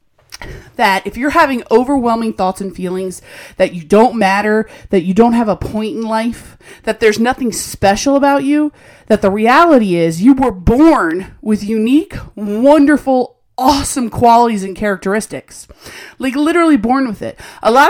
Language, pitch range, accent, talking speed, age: English, 205-265 Hz, American, 160 wpm, 30-49